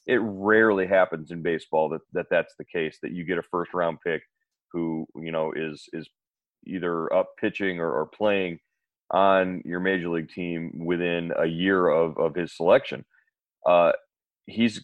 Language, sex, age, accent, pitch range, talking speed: English, male, 30-49, American, 90-105 Hz, 170 wpm